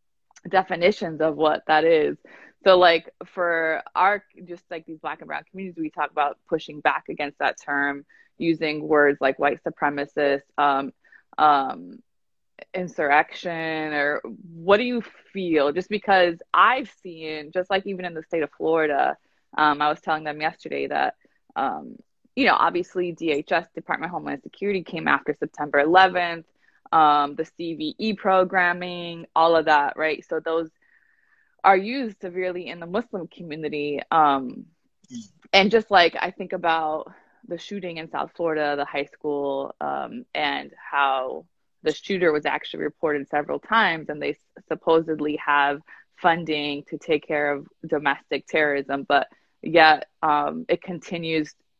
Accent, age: American, 20-39